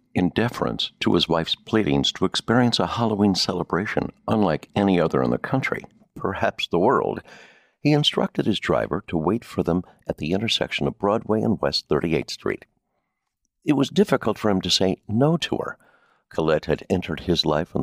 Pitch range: 90-115 Hz